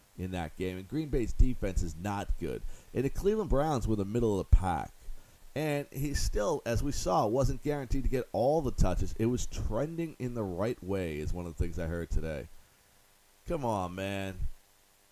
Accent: American